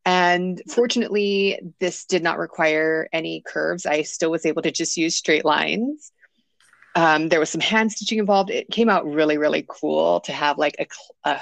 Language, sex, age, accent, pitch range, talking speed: English, female, 30-49, American, 165-225 Hz, 185 wpm